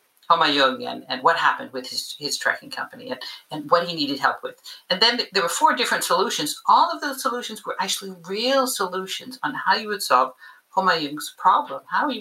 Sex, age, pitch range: female, 50-69, 155-215 Hz